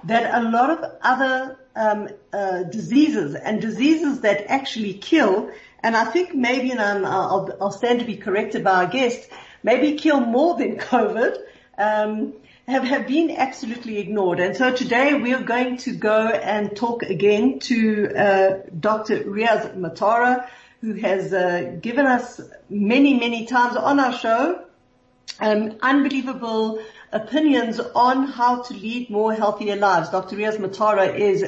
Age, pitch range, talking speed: 50-69, 205-260 Hz, 150 wpm